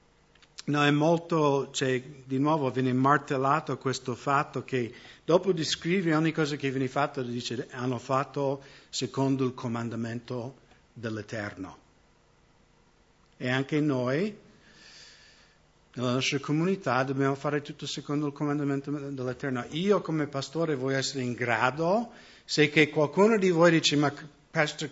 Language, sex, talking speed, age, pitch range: English, male, 130 wpm, 50-69, 130-160 Hz